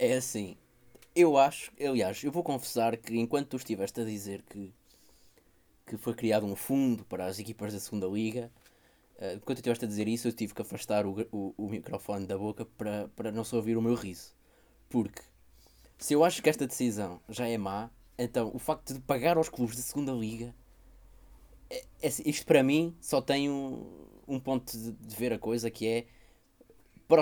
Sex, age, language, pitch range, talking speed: male, 20-39, Portuguese, 105-130 Hz, 195 wpm